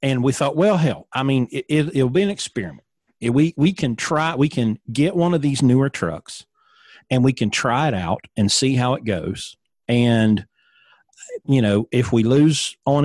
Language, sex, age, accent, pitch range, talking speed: English, male, 40-59, American, 105-135 Hz, 200 wpm